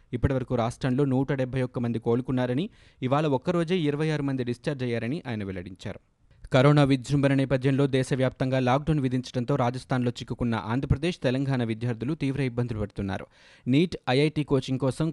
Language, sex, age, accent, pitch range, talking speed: Telugu, male, 20-39, native, 115-140 Hz, 135 wpm